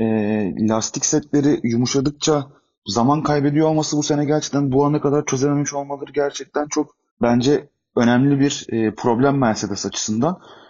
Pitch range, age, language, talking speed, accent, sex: 130-155 Hz, 30-49, Turkish, 125 wpm, native, male